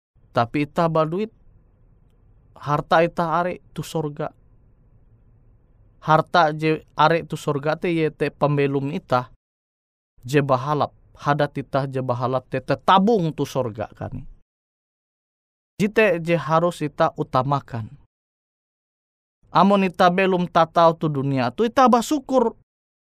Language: Indonesian